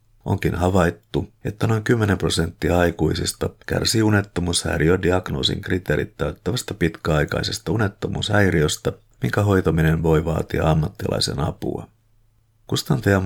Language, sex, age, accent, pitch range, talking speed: Finnish, male, 50-69, native, 85-105 Hz, 90 wpm